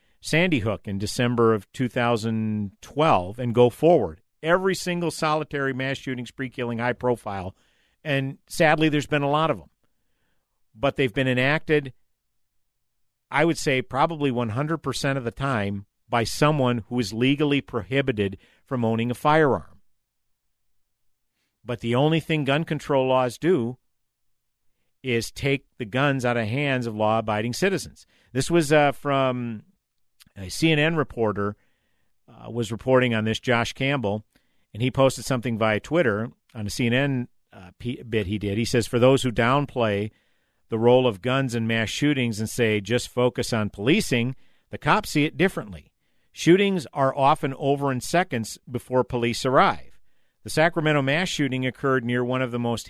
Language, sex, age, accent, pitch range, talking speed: English, male, 50-69, American, 115-145 Hz, 155 wpm